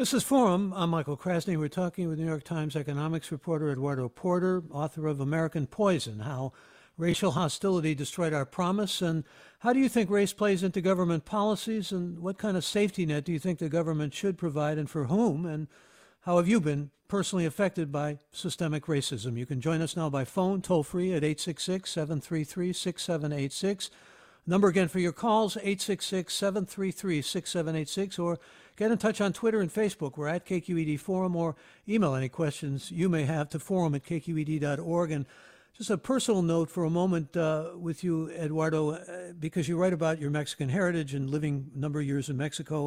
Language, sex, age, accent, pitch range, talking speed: English, male, 60-79, American, 150-185 Hz, 180 wpm